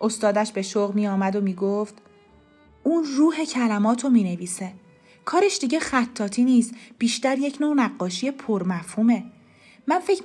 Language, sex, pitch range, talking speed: Persian, female, 200-265 Hz, 145 wpm